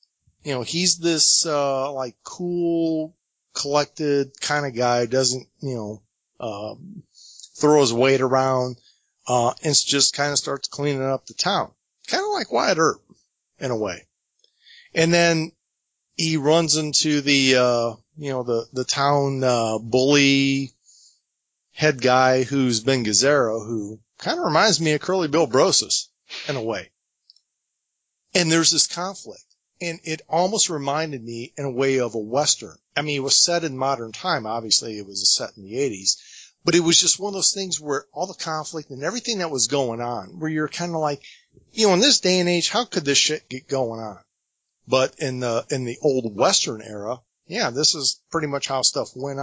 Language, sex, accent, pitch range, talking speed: English, male, American, 125-160 Hz, 185 wpm